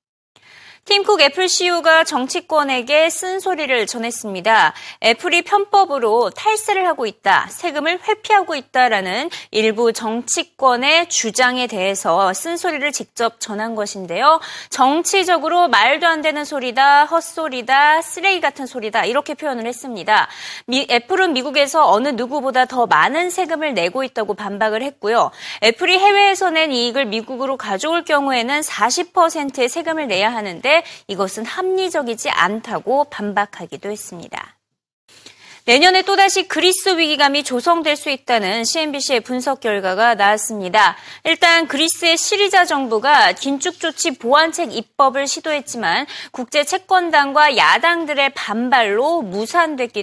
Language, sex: Korean, female